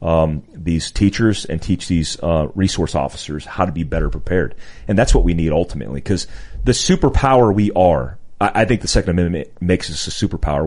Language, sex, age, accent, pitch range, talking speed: English, male, 30-49, American, 85-110 Hz, 195 wpm